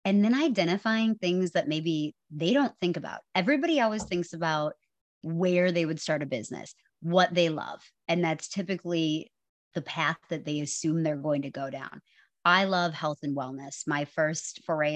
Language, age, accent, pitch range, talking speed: English, 30-49, American, 145-180 Hz, 175 wpm